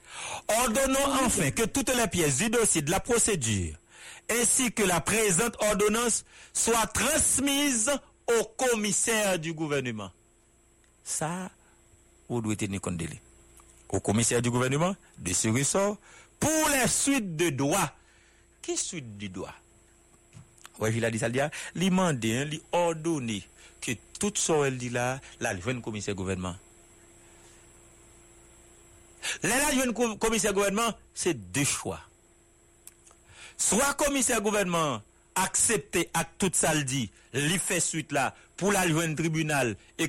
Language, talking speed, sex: English, 130 wpm, male